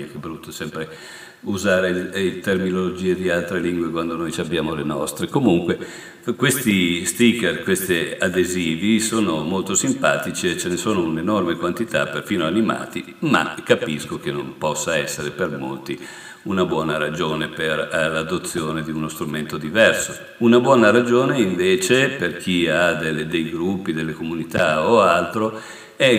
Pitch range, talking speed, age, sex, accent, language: 80-110 Hz, 145 wpm, 50-69, male, native, Italian